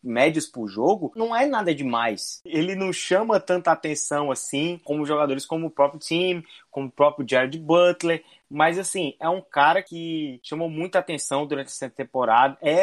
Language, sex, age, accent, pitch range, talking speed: Portuguese, male, 20-39, Brazilian, 140-180 Hz, 175 wpm